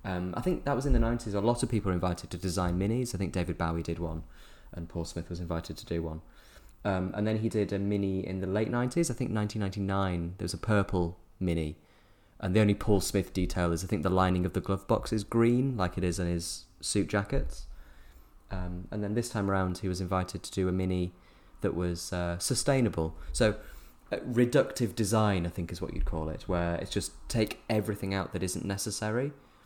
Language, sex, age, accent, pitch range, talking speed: English, male, 20-39, British, 85-105 Hz, 225 wpm